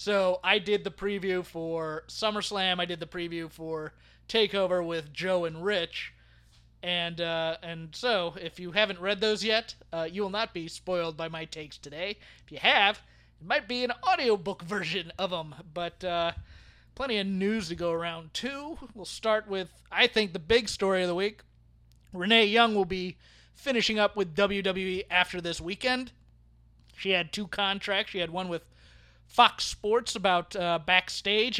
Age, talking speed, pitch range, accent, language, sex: 30-49, 175 wpm, 170-220 Hz, American, English, male